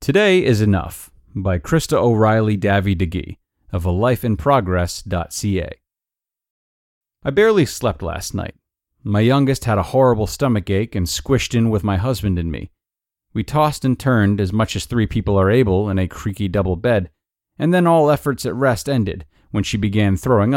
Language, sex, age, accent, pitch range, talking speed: English, male, 30-49, American, 95-130 Hz, 170 wpm